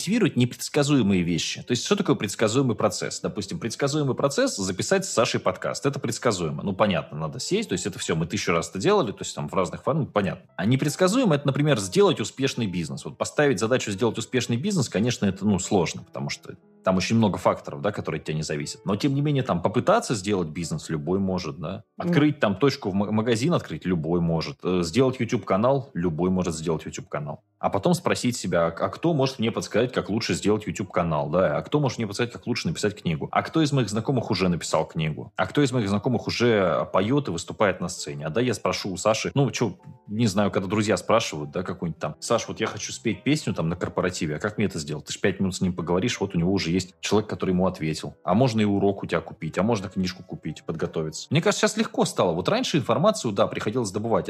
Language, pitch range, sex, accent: Russian, 90-135 Hz, male, native